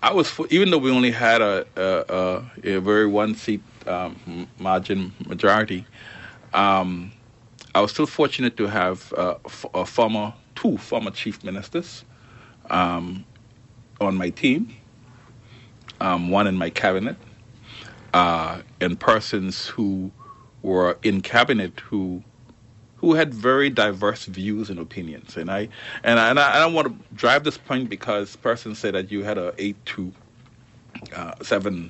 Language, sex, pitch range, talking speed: English, male, 95-120 Hz, 145 wpm